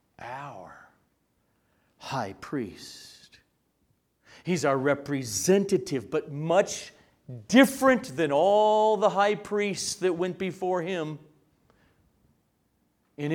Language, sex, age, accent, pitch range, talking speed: English, male, 40-59, American, 135-185 Hz, 85 wpm